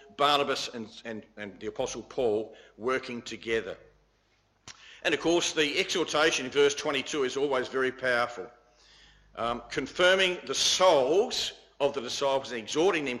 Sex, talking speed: male, 140 wpm